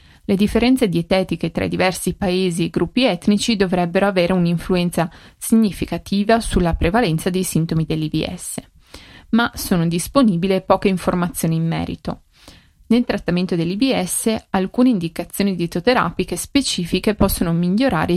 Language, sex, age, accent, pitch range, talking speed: Italian, female, 30-49, native, 170-215 Hz, 110 wpm